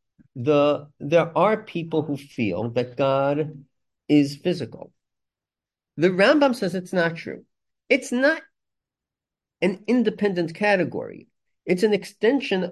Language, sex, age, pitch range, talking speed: English, male, 50-69, 140-180 Hz, 115 wpm